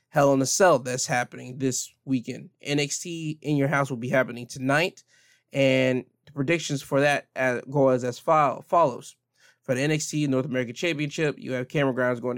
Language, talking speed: English, 185 wpm